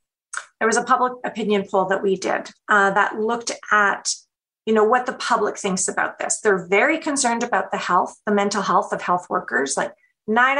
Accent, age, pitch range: American, 30-49, 210-270 Hz